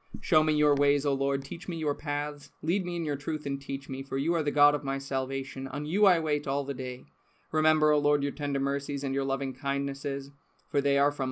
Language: English